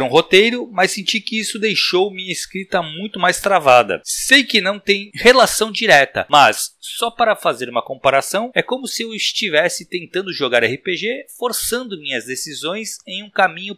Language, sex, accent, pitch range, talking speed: Portuguese, male, Brazilian, 150-210 Hz, 165 wpm